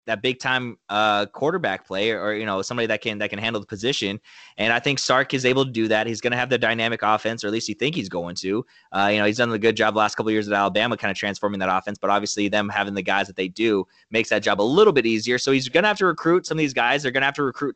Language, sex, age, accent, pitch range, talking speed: English, male, 20-39, American, 105-135 Hz, 320 wpm